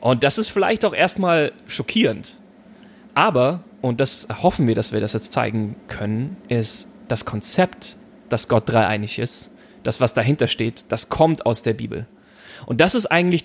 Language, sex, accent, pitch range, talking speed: German, male, German, 120-175 Hz, 170 wpm